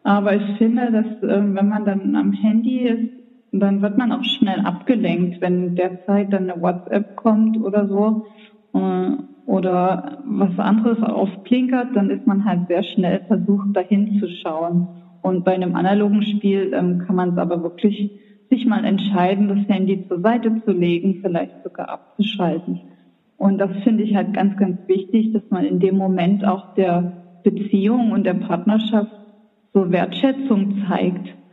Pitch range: 185-215 Hz